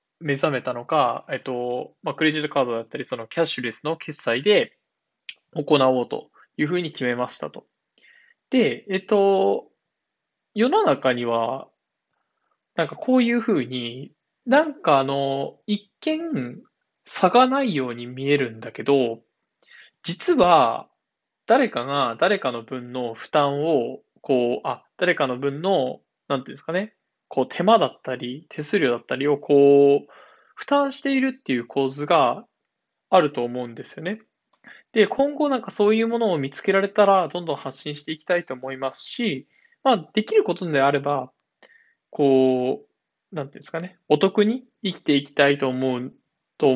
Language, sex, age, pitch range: Japanese, male, 20-39, 130-210 Hz